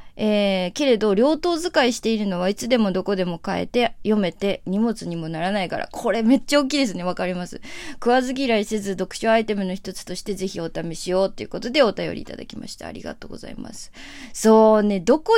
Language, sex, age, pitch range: Japanese, female, 20-39, 185-245 Hz